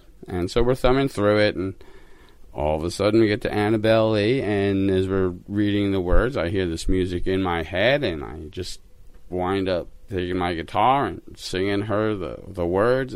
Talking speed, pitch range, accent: 195 wpm, 95-110 Hz, American